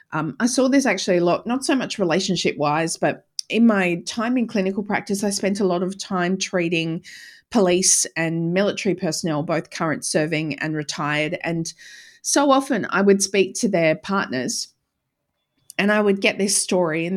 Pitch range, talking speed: 170-230 Hz, 180 wpm